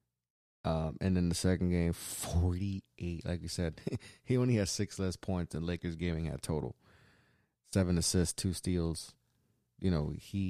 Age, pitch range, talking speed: 30-49, 90-105 Hz, 160 wpm